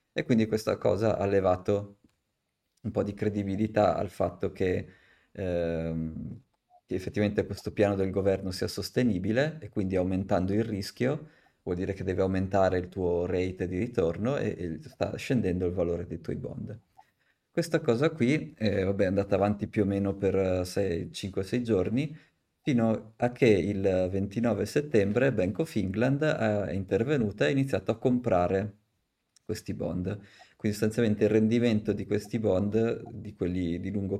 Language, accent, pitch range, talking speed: Italian, native, 95-110 Hz, 155 wpm